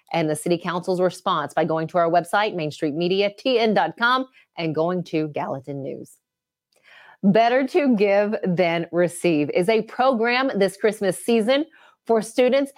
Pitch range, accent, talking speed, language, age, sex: 180-235 Hz, American, 135 wpm, English, 30-49, female